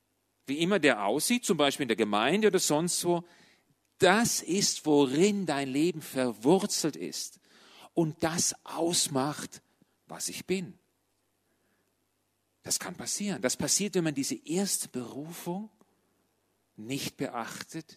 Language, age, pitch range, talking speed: German, 40-59, 120-180 Hz, 125 wpm